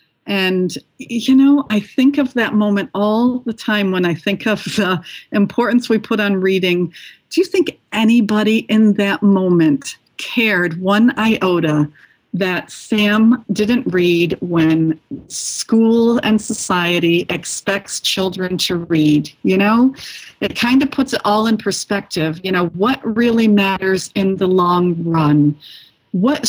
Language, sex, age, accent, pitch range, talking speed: English, female, 50-69, American, 190-240 Hz, 145 wpm